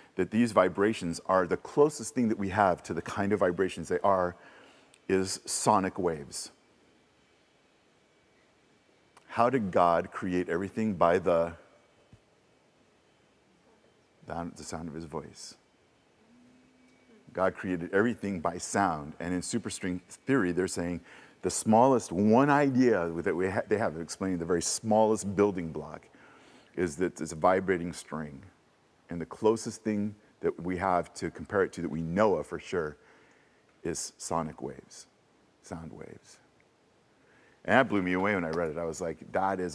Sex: male